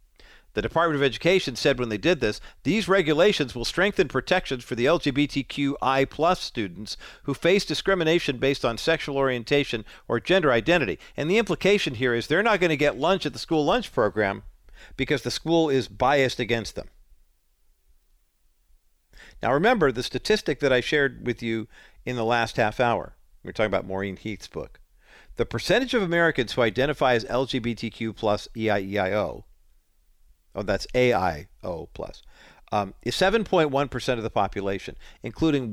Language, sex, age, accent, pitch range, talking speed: English, male, 50-69, American, 105-150 Hz, 155 wpm